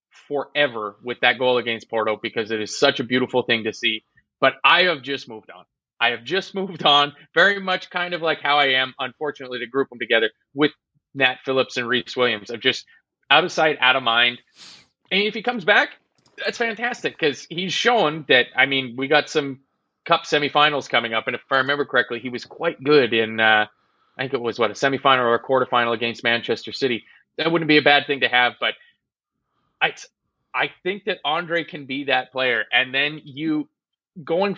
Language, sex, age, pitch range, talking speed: English, male, 30-49, 120-150 Hz, 205 wpm